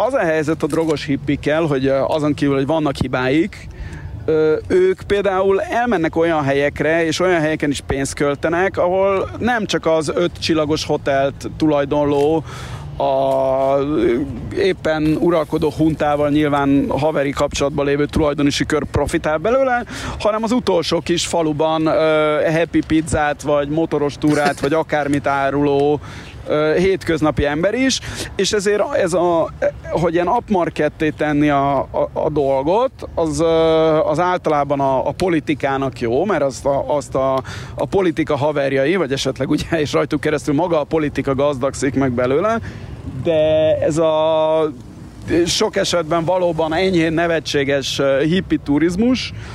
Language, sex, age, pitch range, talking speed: Hungarian, male, 30-49, 140-165 Hz, 120 wpm